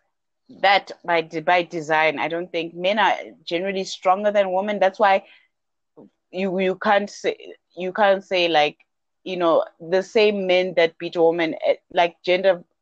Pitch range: 175-225 Hz